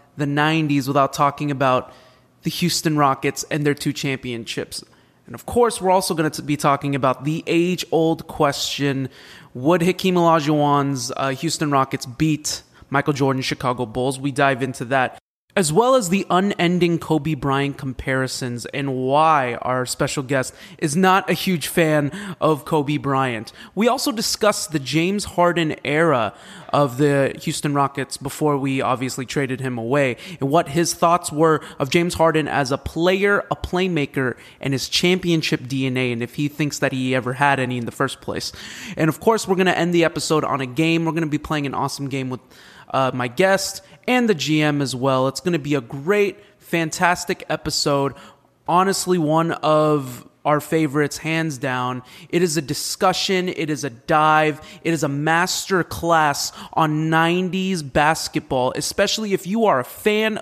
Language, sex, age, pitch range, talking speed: English, male, 20-39, 140-175 Hz, 175 wpm